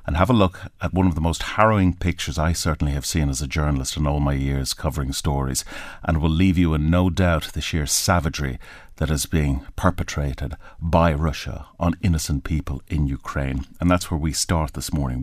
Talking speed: 205 wpm